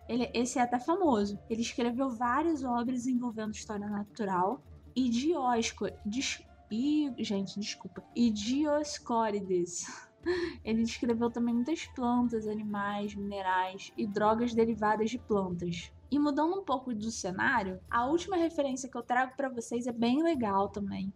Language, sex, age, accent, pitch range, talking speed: Portuguese, female, 10-29, Brazilian, 210-255 Hz, 125 wpm